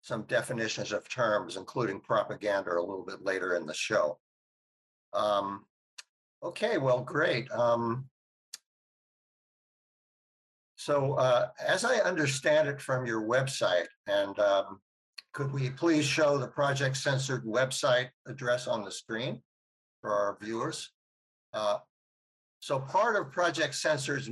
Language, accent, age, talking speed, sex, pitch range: English, American, 60-79, 125 wpm, male, 110-150 Hz